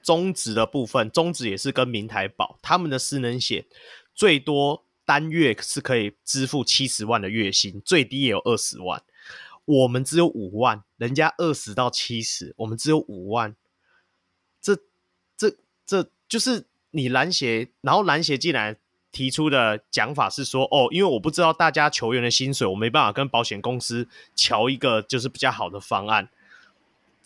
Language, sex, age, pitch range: Chinese, male, 30-49, 115-160 Hz